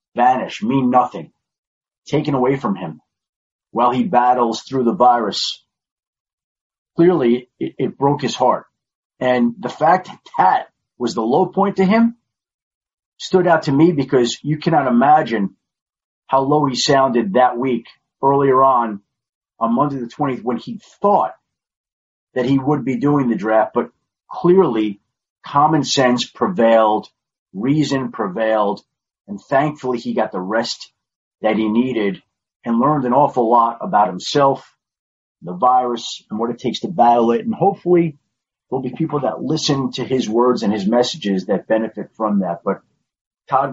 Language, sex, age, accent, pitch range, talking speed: English, male, 40-59, American, 115-145 Hz, 150 wpm